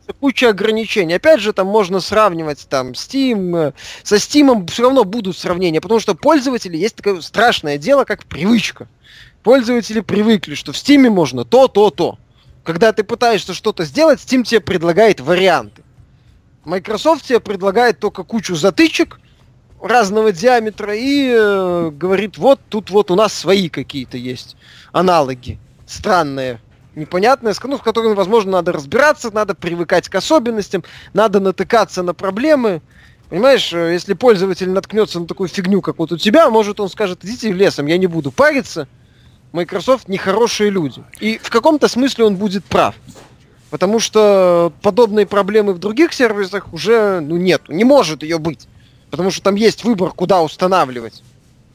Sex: male